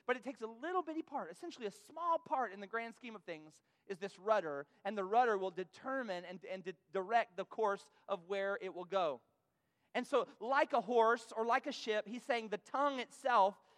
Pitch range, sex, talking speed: 205-265 Hz, male, 215 wpm